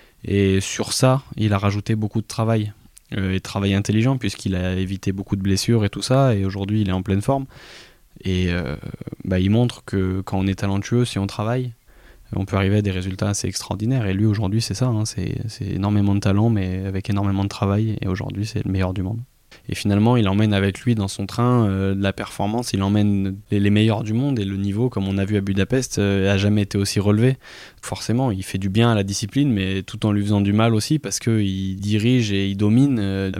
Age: 20-39